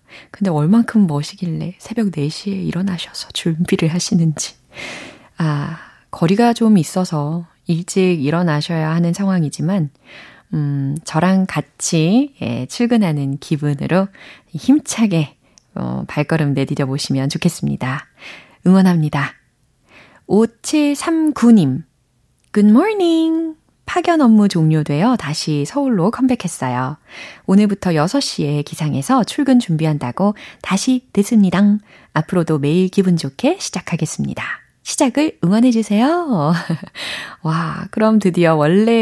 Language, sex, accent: Korean, female, native